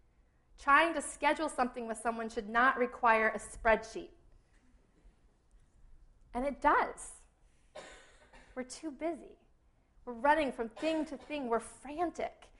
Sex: female